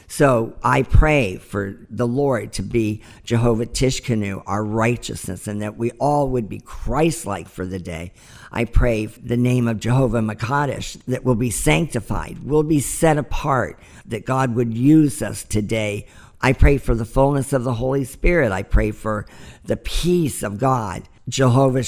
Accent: American